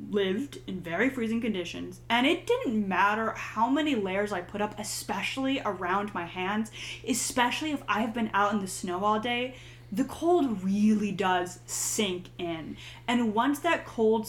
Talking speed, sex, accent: 165 wpm, female, American